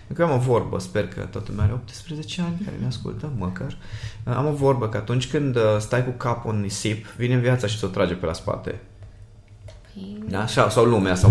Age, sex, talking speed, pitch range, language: 20-39, male, 225 wpm, 105-125 Hz, Romanian